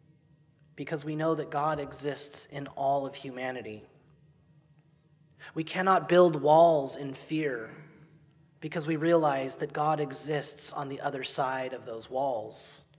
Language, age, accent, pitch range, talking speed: English, 30-49, American, 145-170 Hz, 135 wpm